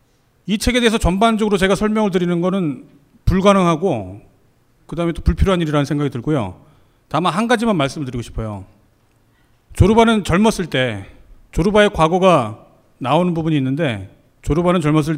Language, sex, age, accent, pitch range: Korean, male, 40-59, native, 130-185 Hz